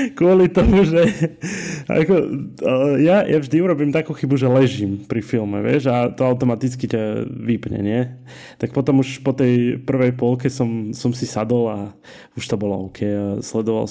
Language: Slovak